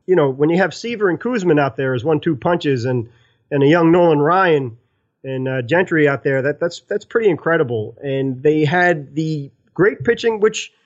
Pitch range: 135-175 Hz